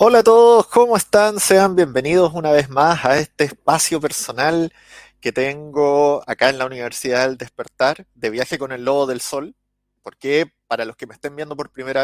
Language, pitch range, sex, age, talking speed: Spanish, 125-160 Hz, male, 30-49, 190 wpm